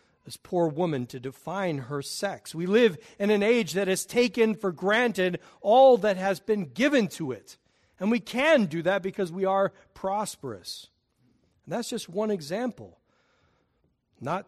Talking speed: 160 wpm